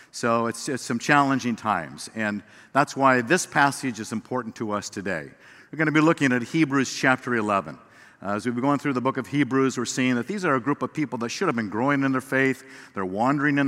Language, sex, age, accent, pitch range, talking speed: English, male, 50-69, American, 110-135 Hz, 240 wpm